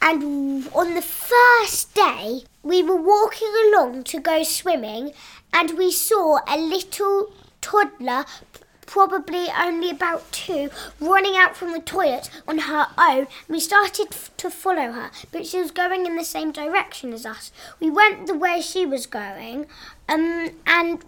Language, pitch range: English, 310-380 Hz